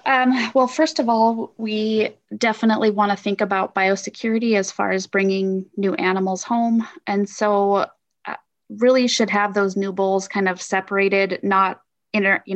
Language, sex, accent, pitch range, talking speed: English, female, American, 190-215 Hz, 160 wpm